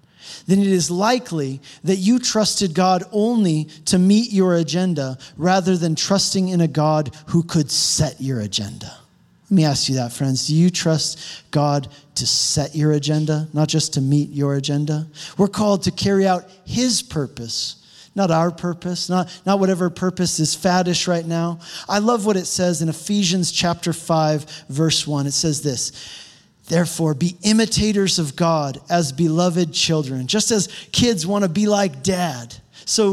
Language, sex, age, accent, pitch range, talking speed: English, male, 40-59, American, 155-195 Hz, 170 wpm